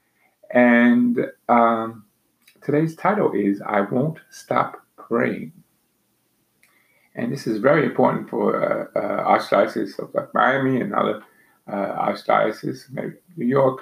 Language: English